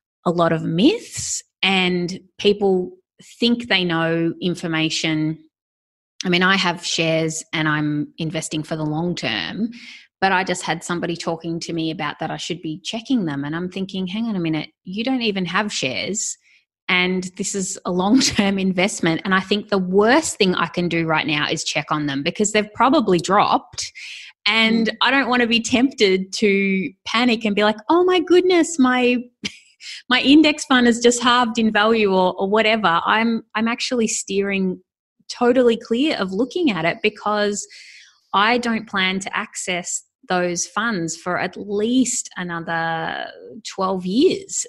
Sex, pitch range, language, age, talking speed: female, 170-225 Hz, English, 20-39, 170 wpm